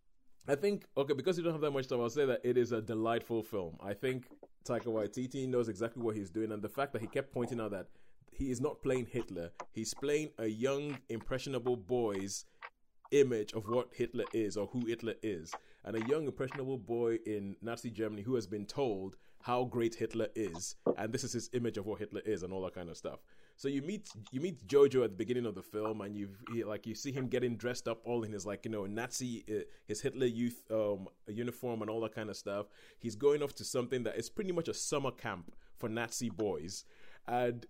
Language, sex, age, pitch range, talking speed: English, male, 30-49, 110-140 Hz, 225 wpm